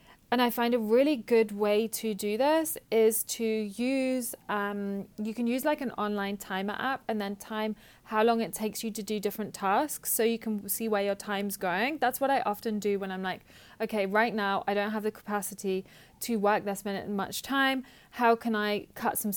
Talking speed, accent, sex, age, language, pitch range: 215 wpm, British, female, 30-49, English, 205-235 Hz